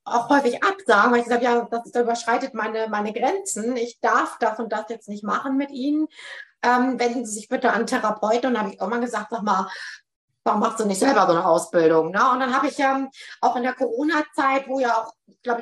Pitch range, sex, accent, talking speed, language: 225-260 Hz, female, German, 240 wpm, German